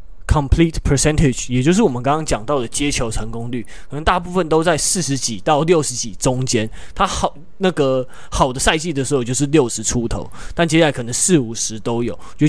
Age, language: 20-39, Chinese